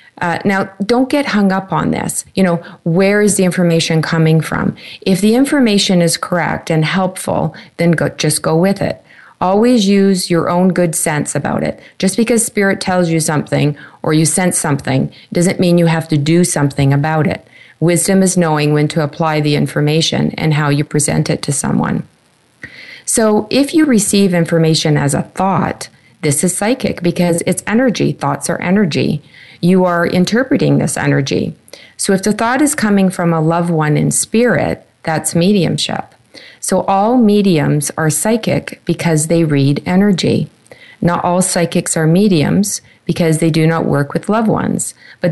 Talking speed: 170 wpm